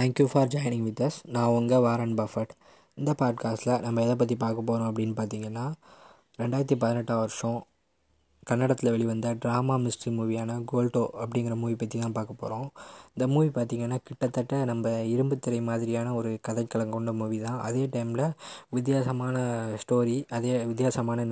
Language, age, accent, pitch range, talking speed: Tamil, 20-39, native, 115-125 Hz, 145 wpm